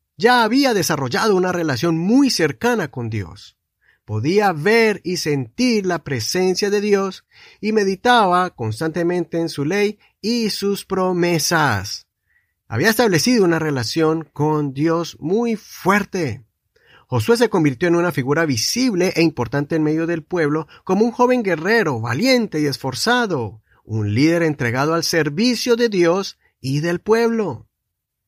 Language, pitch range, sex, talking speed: Spanish, 135-205 Hz, male, 135 wpm